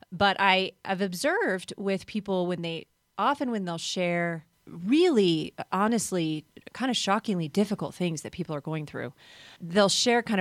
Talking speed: 155 wpm